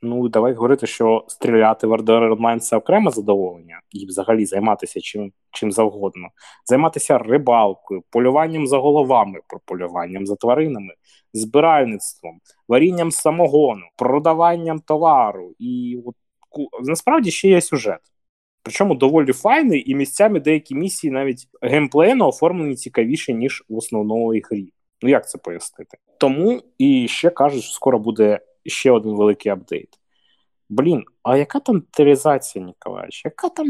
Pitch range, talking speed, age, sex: 115-170 Hz, 130 wpm, 20-39, male